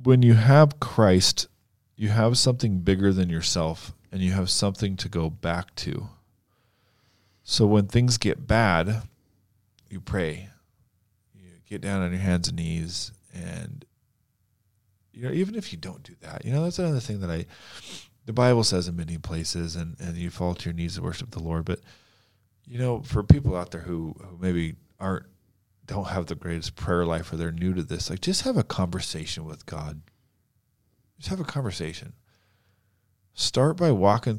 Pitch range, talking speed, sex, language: 85-115 Hz, 180 wpm, male, English